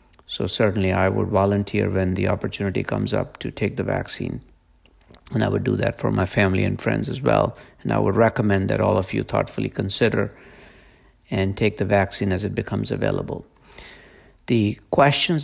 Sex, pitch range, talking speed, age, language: male, 95-115 Hz, 180 wpm, 50-69, English